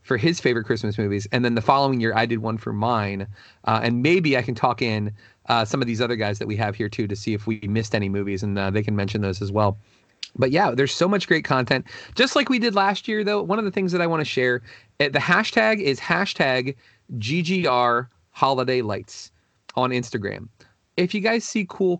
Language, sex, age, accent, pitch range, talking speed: English, male, 30-49, American, 110-135 Hz, 230 wpm